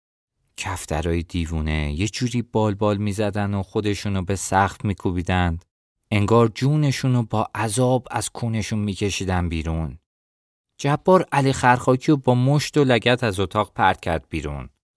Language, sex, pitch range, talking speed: Persian, male, 90-120 Hz, 130 wpm